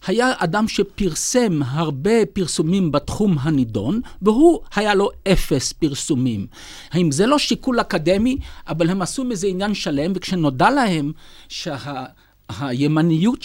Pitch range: 140-195 Hz